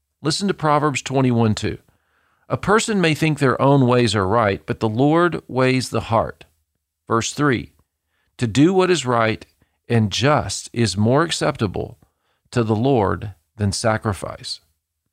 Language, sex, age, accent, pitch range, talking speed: English, male, 40-59, American, 100-135 Hz, 145 wpm